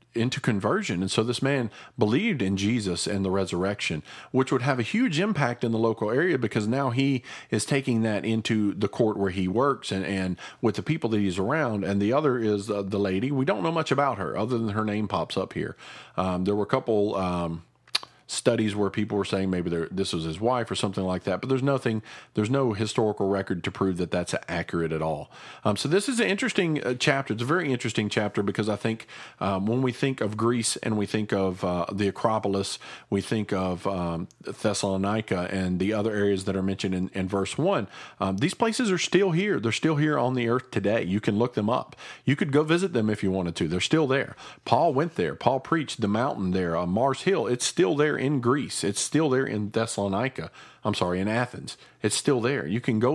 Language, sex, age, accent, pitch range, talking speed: English, male, 40-59, American, 100-130 Hz, 225 wpm